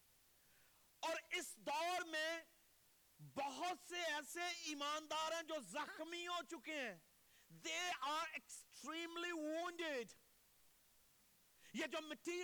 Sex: male